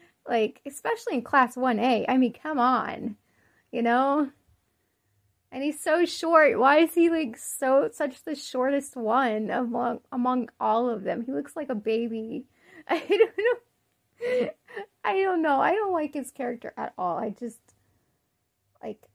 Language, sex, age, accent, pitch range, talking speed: English, female, 20-39, American, 225-310 Hz, 155 wpm